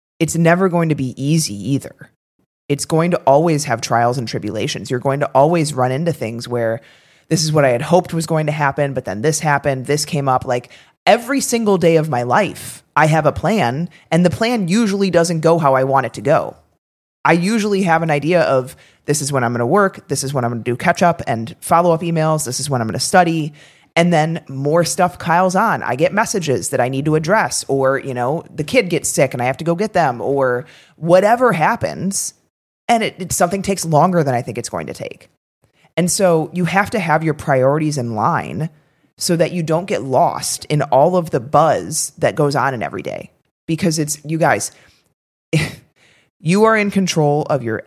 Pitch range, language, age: 135-175 Hz, English, 30-49